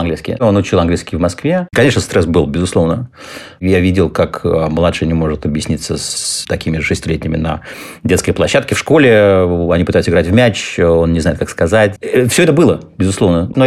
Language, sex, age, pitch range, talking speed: Russian, male, 30-49, 90-120 Hz, 175 wpm